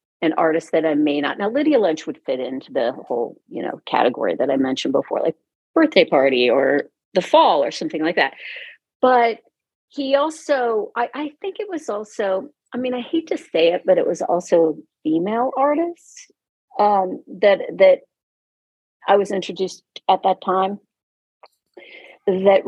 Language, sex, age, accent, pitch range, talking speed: English, female, 40-59, American, 170-275 Hz, 165 wpm